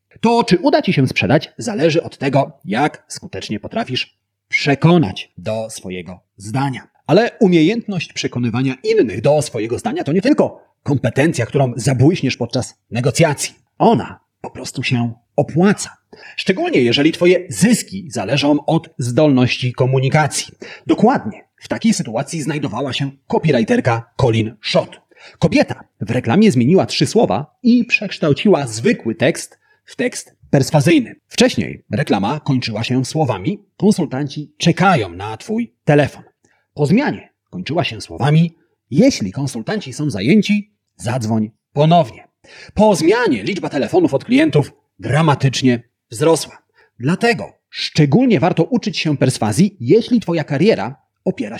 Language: Polish